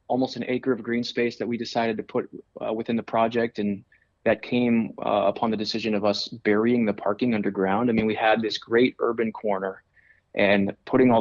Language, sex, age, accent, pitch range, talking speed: English, male, 20-39, American, 100-115 Hz, 210 wpm